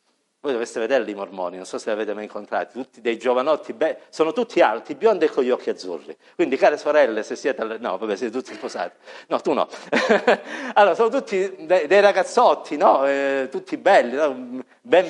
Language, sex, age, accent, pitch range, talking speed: Italian, male, 50-69, native, 135-210 Hz, 205 wpm